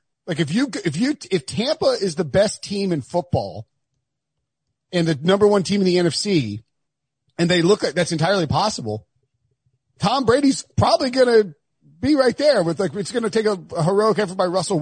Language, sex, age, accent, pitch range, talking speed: English, male, 40-59, American, 150-230 Hz, 190 wpm